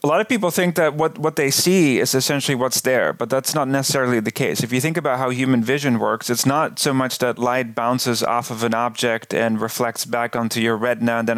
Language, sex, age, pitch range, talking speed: English, male, 40-59, 120-145 Hz, 250 wpm